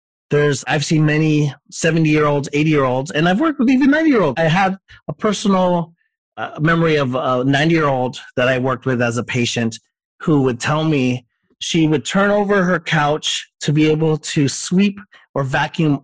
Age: 30-49